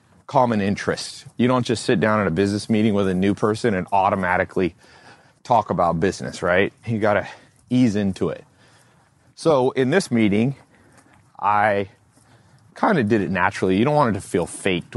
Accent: American